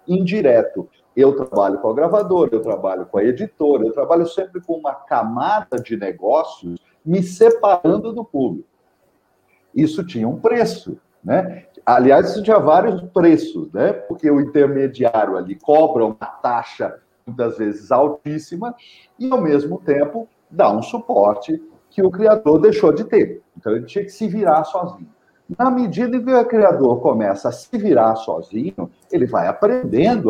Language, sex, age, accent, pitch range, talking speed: Portuguese, male, 50-69, Brazilian, 140-215 Hz, 155 wpm